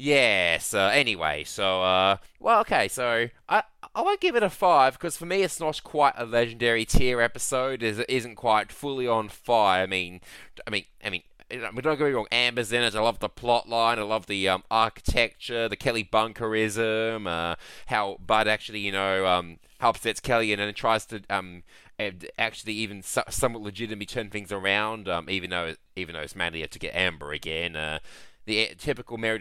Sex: male